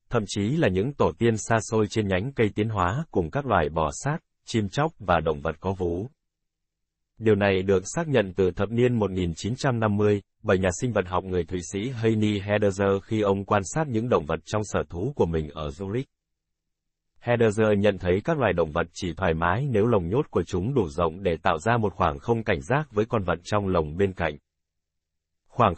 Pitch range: 85-110 Hz